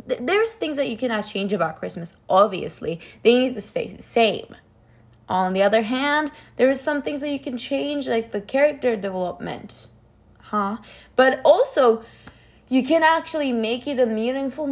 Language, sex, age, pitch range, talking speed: English, female, 10-29, 180-255 Hz, 165 wpm